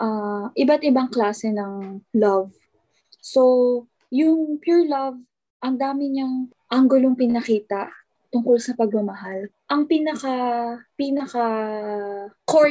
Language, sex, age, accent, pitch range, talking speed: Filipino, female, 20-39, native, 205-265 Hz, 95 wpm